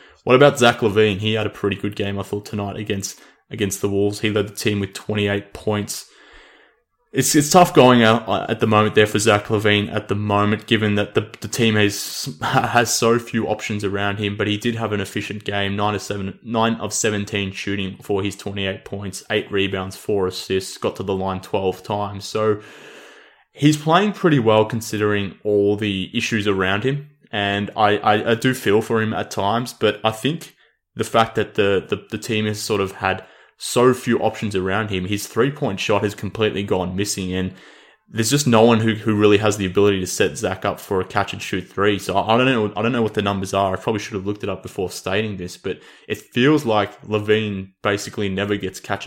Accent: Australian